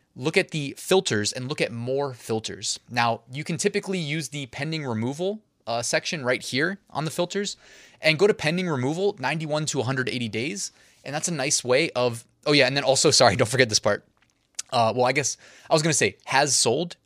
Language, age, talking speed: English, 20-39, 210 wpm